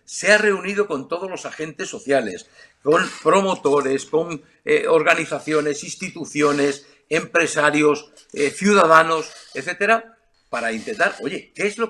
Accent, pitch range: Spanish, 155-215 Hz